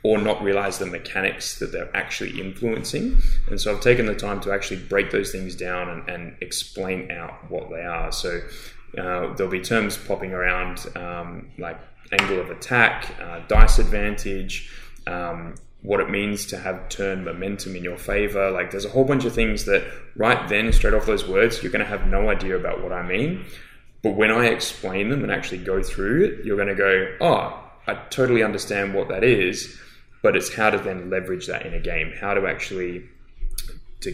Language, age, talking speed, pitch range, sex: English, 20-39, 195 wpm, 95-120 Hz, male